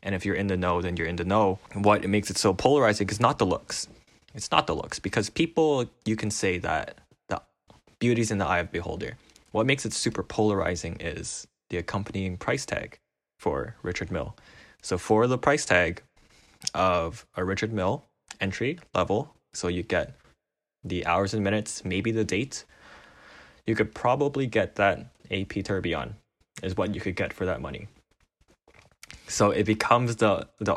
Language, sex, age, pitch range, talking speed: English, male, 20-39, 95-110 Hz, 180 wpm